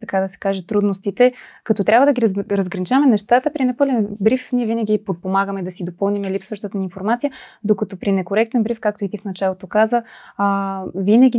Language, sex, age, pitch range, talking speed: Bulgarian, female, 20-39, 195-245 Hz, 180 wpm